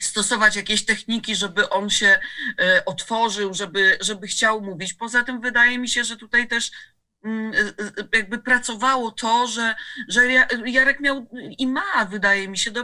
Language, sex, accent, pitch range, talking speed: Polish, female, native, 210-250 Hz, 150 wpm